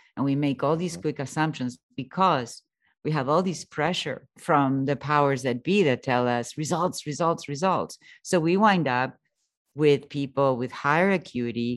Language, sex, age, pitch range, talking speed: English, female, 50-69, 125-155 Hz, 170 wpm